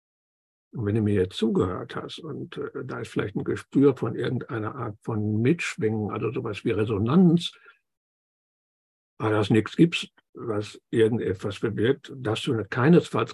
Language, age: German, 60-79